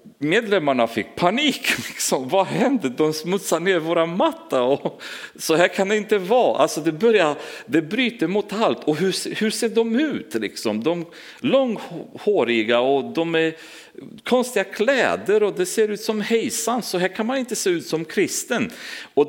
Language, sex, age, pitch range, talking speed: Swedish, male, 40-59, 165-260 Hz, 170 wpm